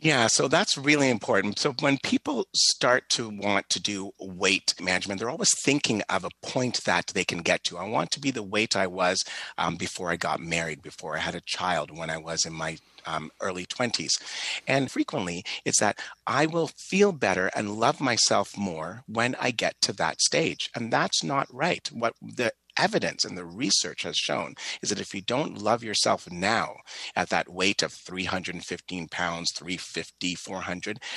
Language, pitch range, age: English, 85-125 Hz, 30-49